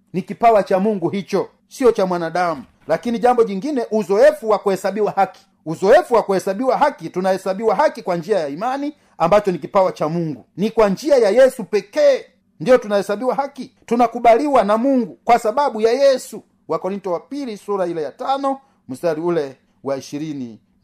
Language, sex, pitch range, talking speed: Swahili, male, 195-240 Hz, 165 wpm